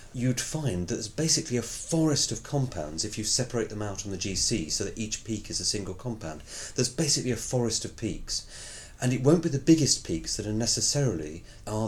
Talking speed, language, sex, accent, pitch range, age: 210 wpm, English, male, British, 105-130 Hz, 30-49